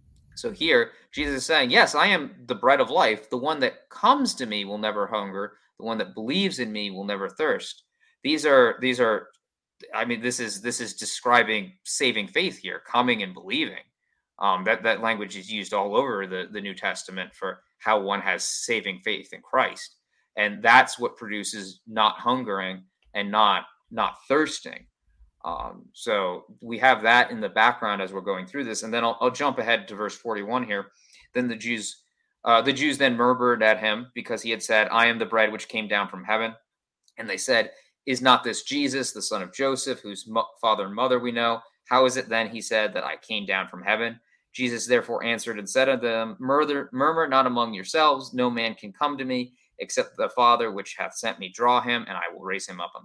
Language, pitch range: English, 110-130 Hz